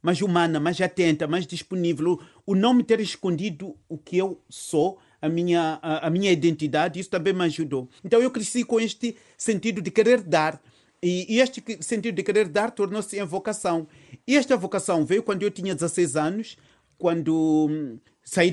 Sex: male